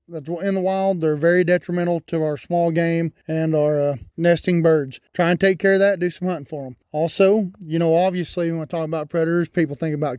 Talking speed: 225 wpm